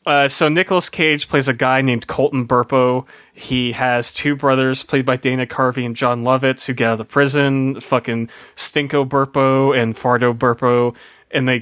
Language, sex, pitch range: English, male, 120-145 Hz